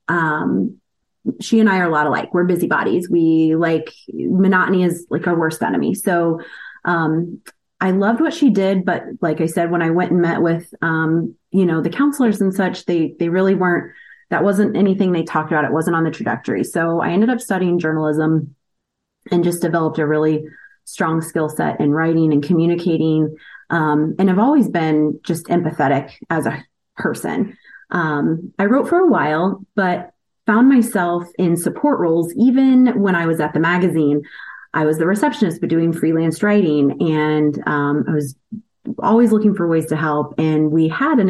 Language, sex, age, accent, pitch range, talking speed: English, female, 30-49, American, 160-210 Hz, 185 wpm